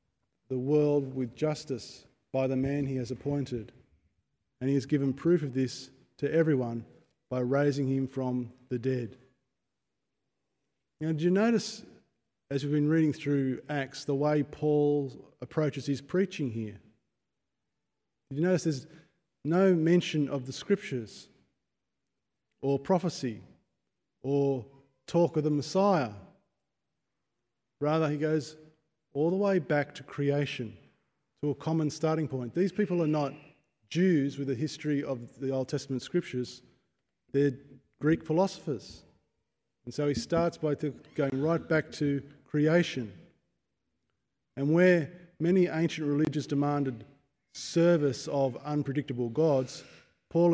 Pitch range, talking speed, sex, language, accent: 130-155 Hz, 130 wpm, male, English, Australian